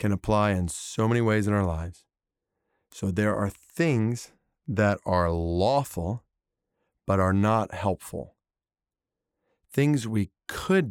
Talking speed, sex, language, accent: 125 wpm, male, English, American